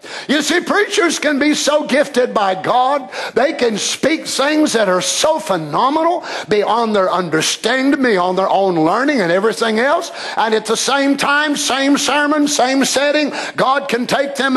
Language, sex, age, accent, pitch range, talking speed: English, male, 50-69, American, 220-290 Hz, 170 wpm